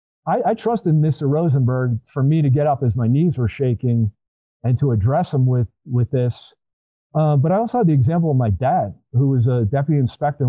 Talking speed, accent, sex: 210 wpm, American, male